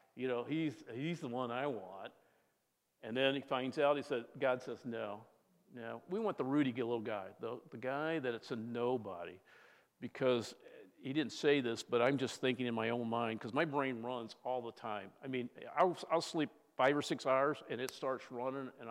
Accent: American